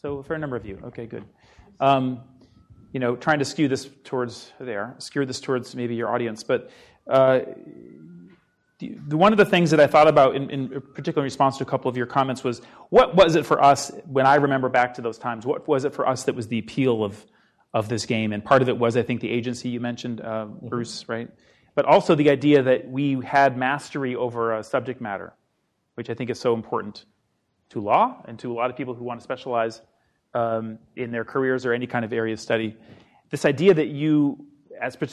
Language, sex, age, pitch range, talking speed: English, male, 40-59, 115-140 Hz, 220 wpm